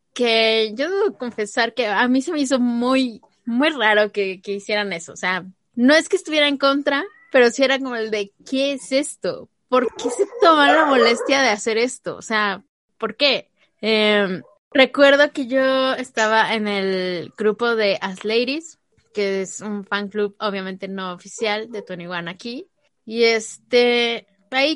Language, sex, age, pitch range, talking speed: Spanish, female, 20-39, 210-270 Hz, 175 wpm